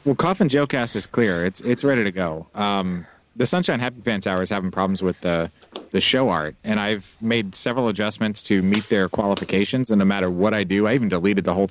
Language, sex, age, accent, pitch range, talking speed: English, male, 30-49, American, 95-115 Hz, 225 wpm